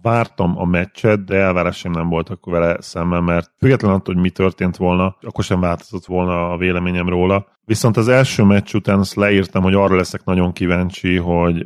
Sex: male